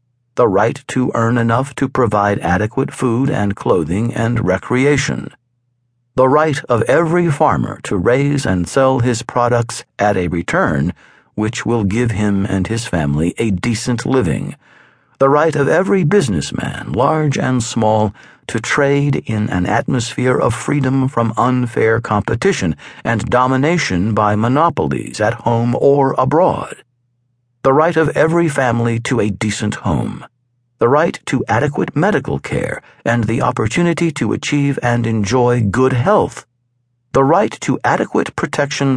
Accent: American